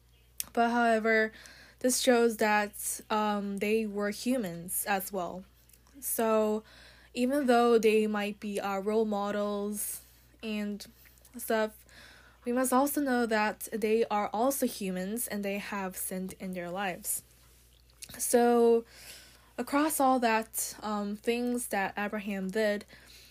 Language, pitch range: Korean, 195-235 Hz